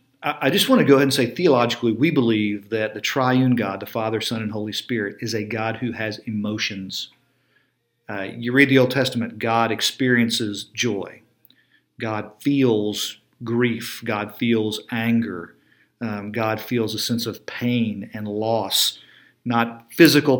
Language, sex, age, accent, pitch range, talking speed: English, male, 50-69, American, 110-130 Hz, 155 wpm